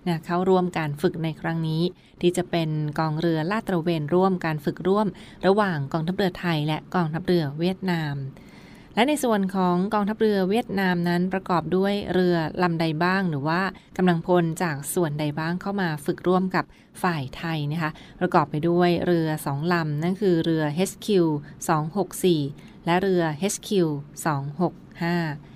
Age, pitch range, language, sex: 20-39, 160-185 Hz, Thai, female